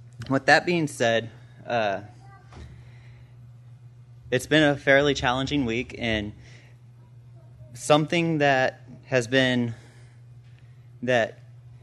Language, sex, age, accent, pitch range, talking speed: English, male, 30-49, American, 120-130 Hz, 85 wpm